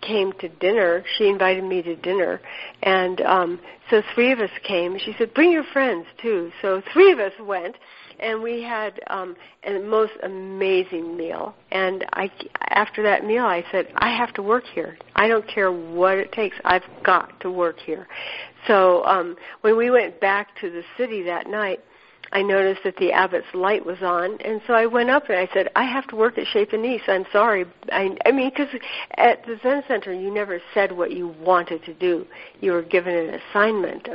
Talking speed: 200 wpm